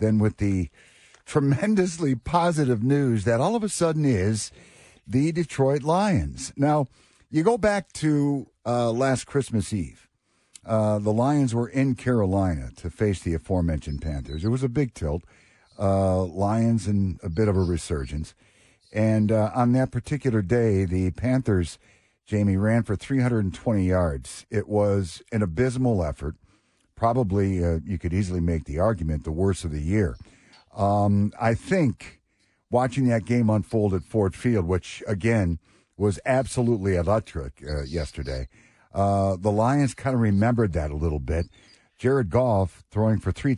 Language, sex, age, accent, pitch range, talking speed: English, male, 50-69, American, 95-120 Hz, 155 wpm